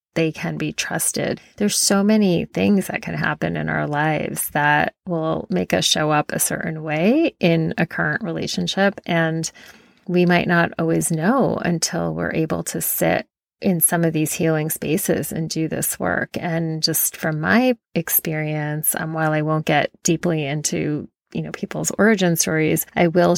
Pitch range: 155-185 Hz